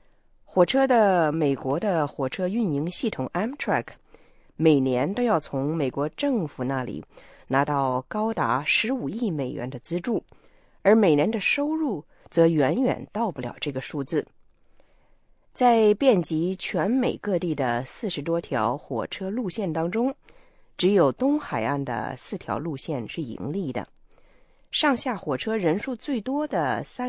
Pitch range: 145-235 Hz